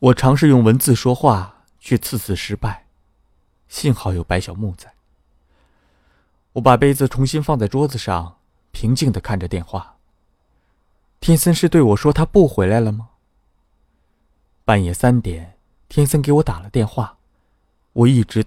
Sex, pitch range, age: male, 85-125 Hz, 20-39